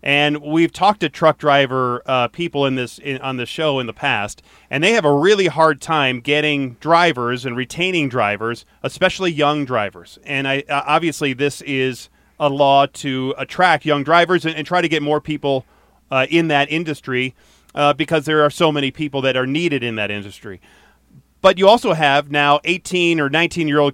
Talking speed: 190 wpm